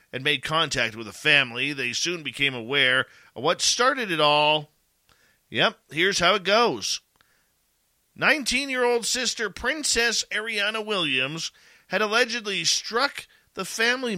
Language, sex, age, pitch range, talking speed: English, male, 40-59, 140-195 Hz, 125 wpm